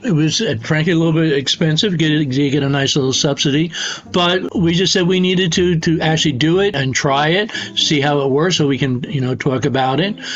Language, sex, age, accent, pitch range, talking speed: English, male, 60-79, American, 145-180 Hz, 245 wpm